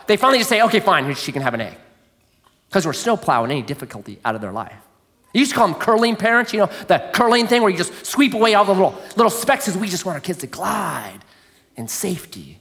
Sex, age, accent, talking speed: male, 30-49, American, 250 wpm